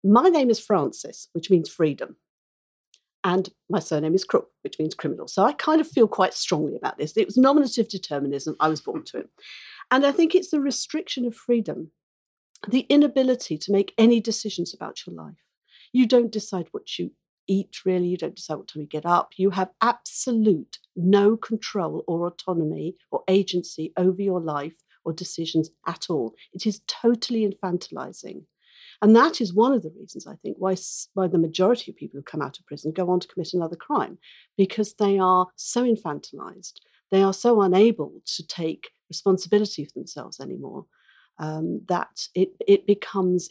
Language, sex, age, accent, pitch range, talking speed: English, female, 50-69, British, 175-225 Hz, 180 wpm